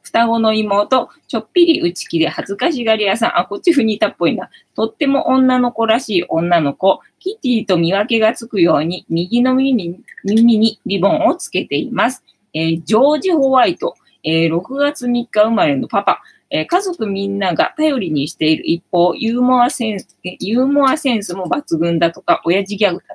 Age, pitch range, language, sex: 20-39, 180-290 Hz, Japanese, female